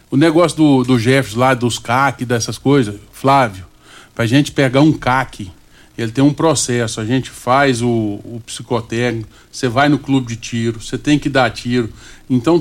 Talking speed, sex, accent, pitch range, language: 180 wpm, male, Brazilian, 120-165 Hz, Portuguese